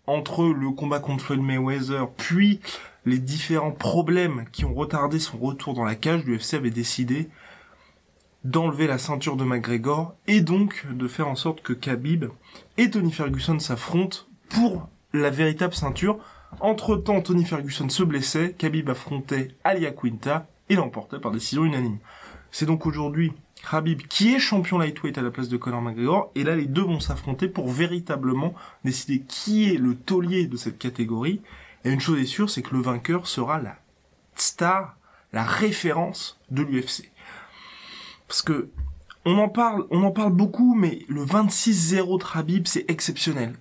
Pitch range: 130-180 Hz